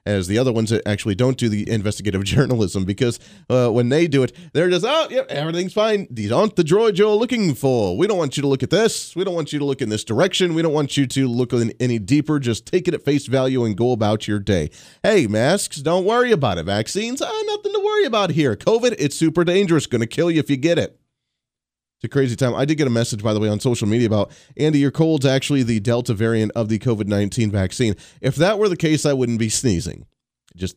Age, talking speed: 30-49, 250 wpm